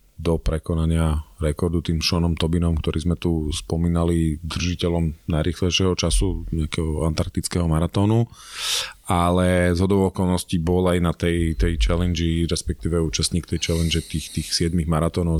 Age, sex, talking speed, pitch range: 30-49, male, 130 wpm, 80-95 Hz